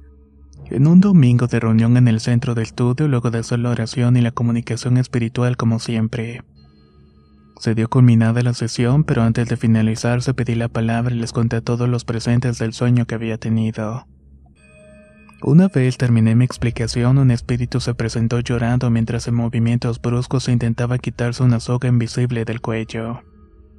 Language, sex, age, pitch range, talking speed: Spanish, male, 20-39, 115-120 Hz, 170 wpm